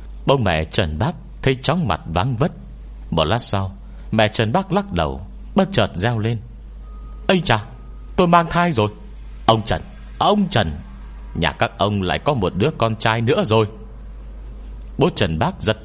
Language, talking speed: Vietnamese, 175 wpm